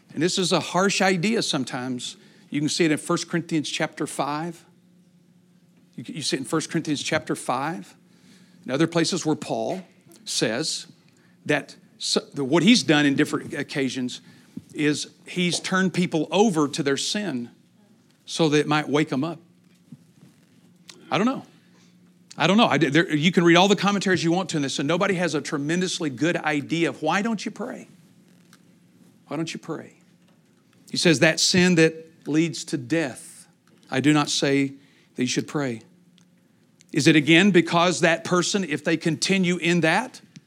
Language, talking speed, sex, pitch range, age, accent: English, 170 wpm, male, 150-180 Hz, 50-69, American